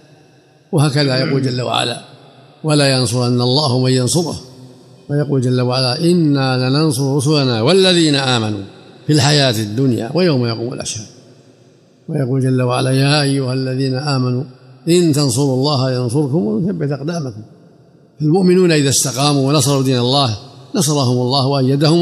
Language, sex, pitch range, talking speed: Arabic, male, 130-155 Hz, 125 wpm